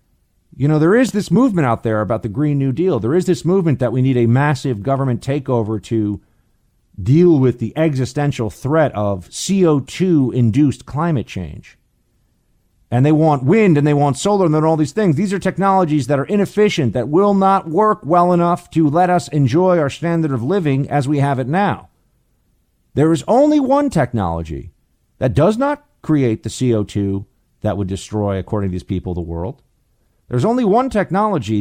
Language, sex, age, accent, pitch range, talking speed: English, male, 50-69, American, 105-160 Hz, 180 wpm